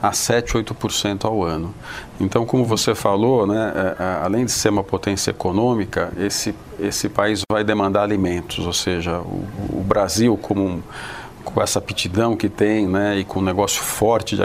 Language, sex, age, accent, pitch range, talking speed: Portuguese, male, 50-69, Brazilian, 95-115 Hz, 170 wpm